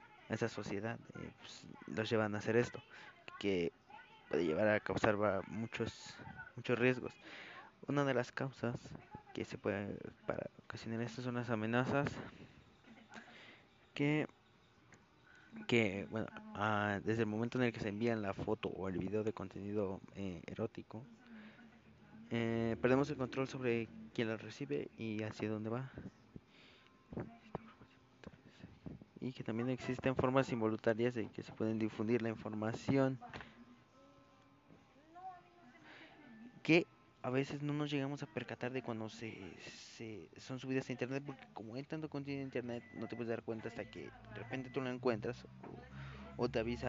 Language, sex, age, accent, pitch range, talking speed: Spanish, male, 20-39, Mexican, 105-130 Hz, 150 wpm